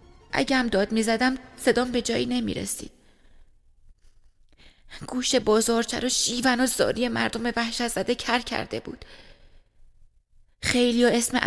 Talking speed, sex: 130 wpm, female